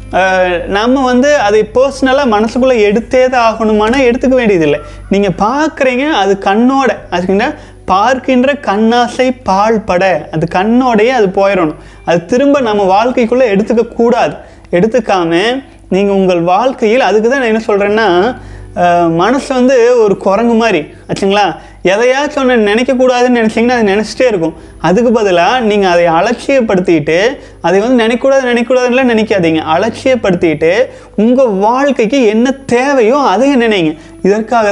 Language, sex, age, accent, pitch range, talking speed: Tamil, male, 20-39, native, 190-250 Hz, 115 wpm